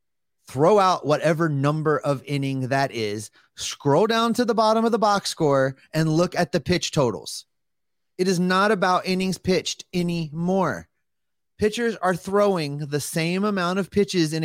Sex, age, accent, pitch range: male, 30-49, American, 145-190 Hz